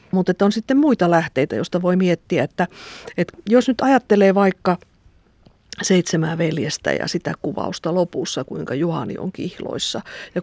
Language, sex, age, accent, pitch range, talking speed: Finnish, female, 50-69, native, 170-190 Hz, 145 wpm